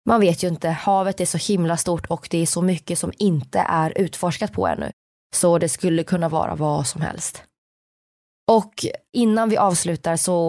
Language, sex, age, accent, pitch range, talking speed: Swedish, female, 20-39, native, 165-205 Hz, 190 wpm